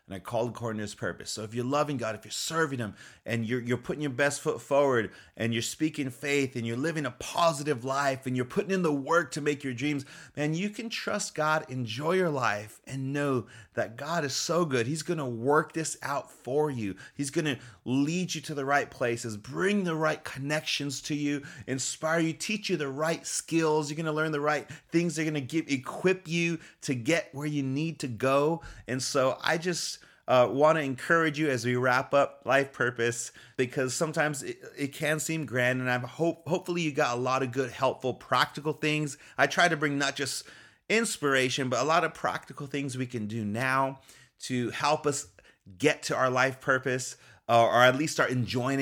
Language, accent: English, American